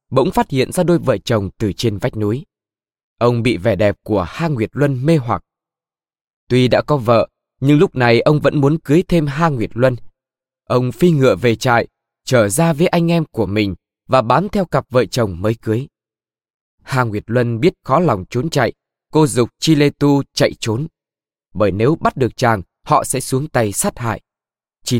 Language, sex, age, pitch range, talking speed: Vietnamese, male, 20-39, 110-150 Hz, 200 wpm